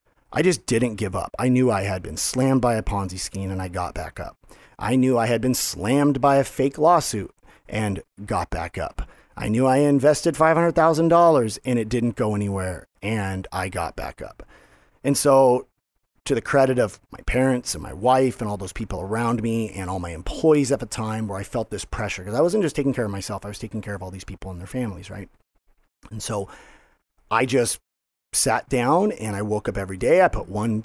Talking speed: 220 wpm